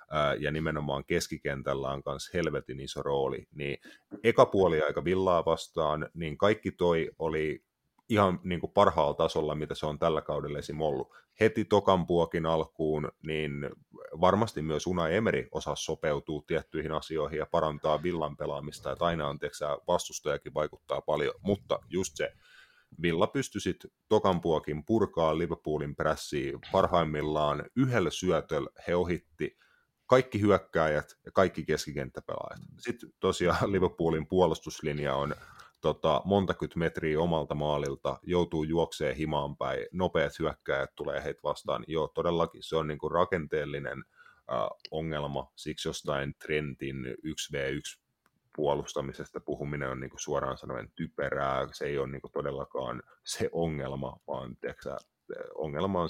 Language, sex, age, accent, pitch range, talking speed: Finnish, male, 30-49, native, 75-95 Hz, 125 wpm